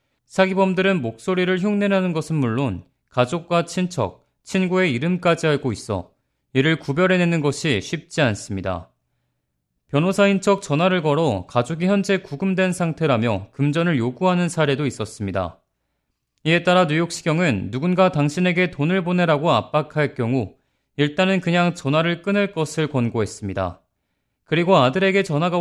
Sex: male